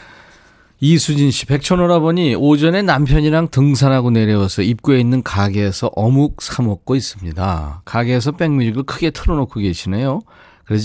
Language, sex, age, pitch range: Korean, male, 40-59, 100-135 Hz